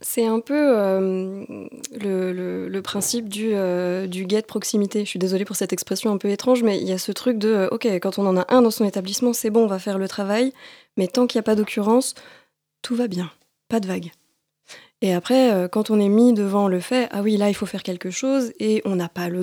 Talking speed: 250 wpm